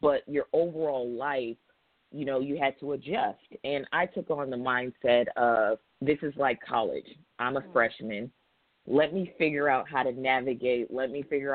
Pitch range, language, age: 130-155 Hz, English, 30-49